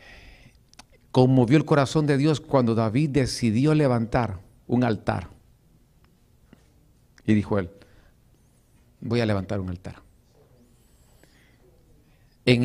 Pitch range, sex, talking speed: 120-170 Hz, male, 95 wpm